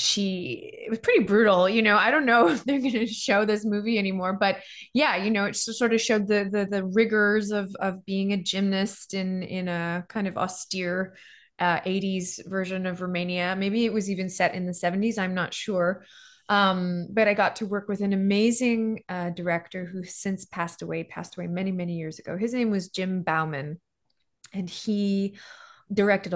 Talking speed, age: 195 wpm, 20-39